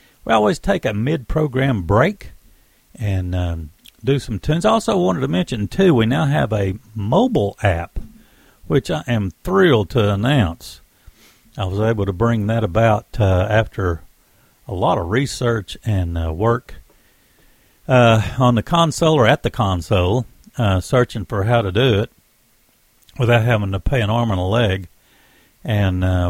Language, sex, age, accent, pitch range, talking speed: English, male, 60-79, American, 100-130 Hz, 165 wpm